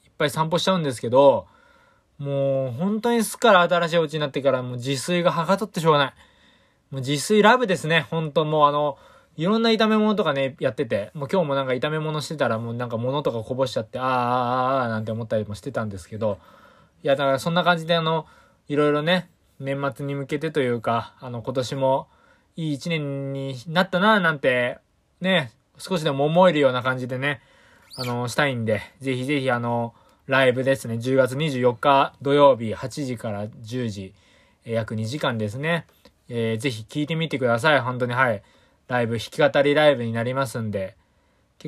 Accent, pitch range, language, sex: native, 115-160 Hz, Japanese, male